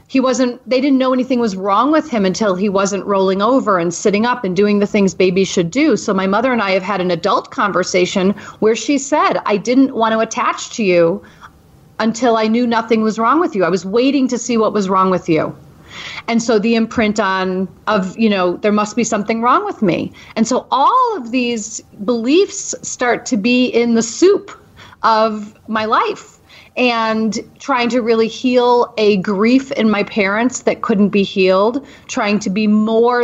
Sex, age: female, 40-59